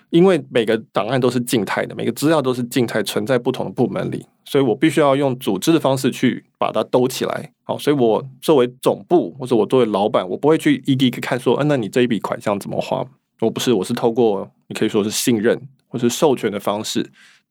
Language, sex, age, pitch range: Chinese, male, 20-39, 115-140 Hz